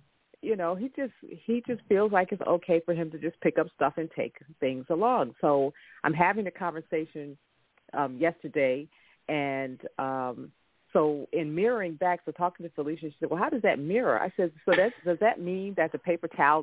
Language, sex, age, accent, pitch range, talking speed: English, female, 40-59, American, 140-175 Hz, 200 wpm